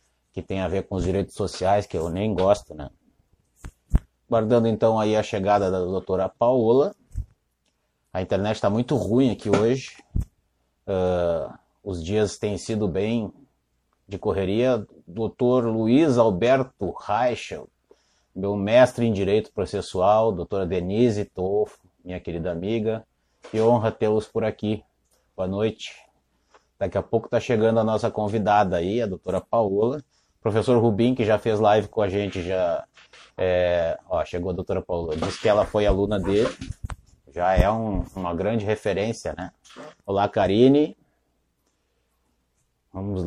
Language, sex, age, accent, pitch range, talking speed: Portuguese, male, 30-49, Brazilian, 90-120 Hz, 135 wpm